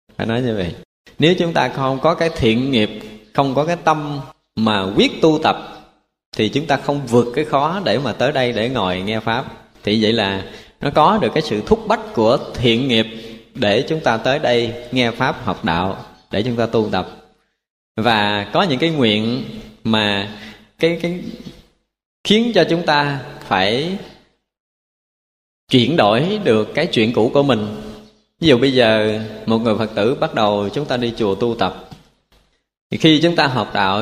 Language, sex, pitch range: Vietnamese, male, 110-145 Hz